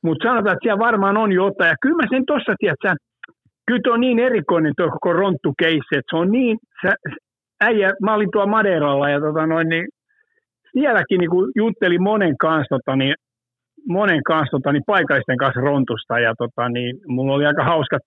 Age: 60-79